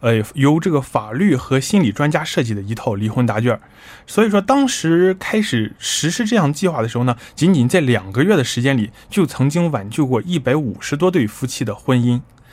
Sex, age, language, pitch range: male, 20-39, Korean, 120-180 Hz